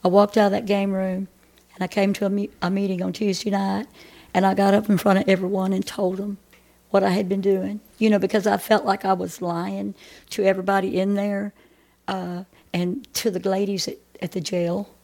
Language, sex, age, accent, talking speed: English, female, 60-79, American, 225 wpm